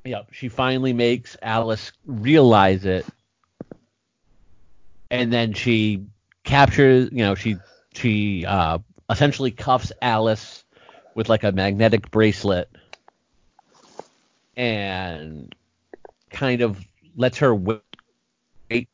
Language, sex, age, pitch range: English, male, 40-59, 105-125 Hz